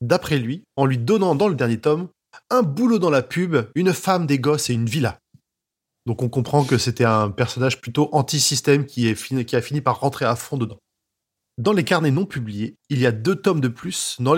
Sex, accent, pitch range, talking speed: male, French, 120-170 Hz, 215 wpm